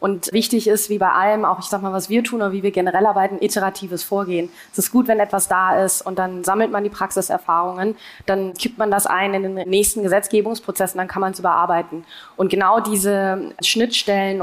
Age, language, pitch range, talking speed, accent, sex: 20-39, German, 190-215 Hz, 210 wpm, German, female